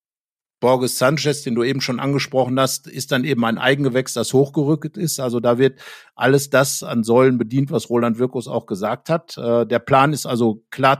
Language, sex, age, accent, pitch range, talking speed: German, male, 50-69, German, 125-145 Hz, 190 wpm